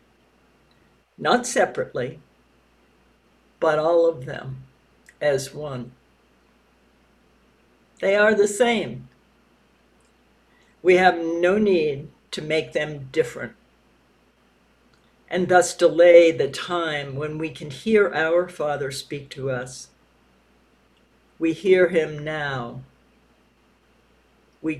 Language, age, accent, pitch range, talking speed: English, 60-79, American, 135-180 Hz, 95 wpm